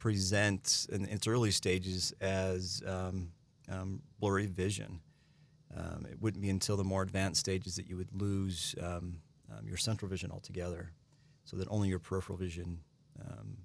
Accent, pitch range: American, 90-110 Hz